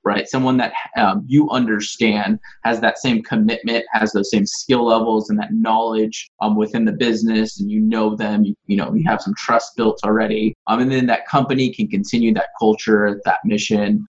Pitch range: 110-175 Hz